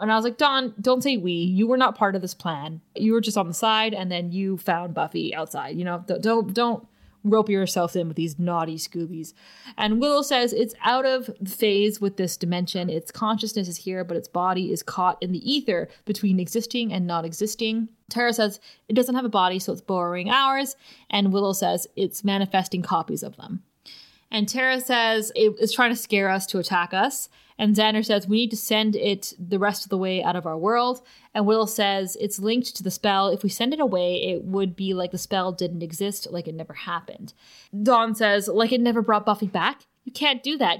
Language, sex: English, female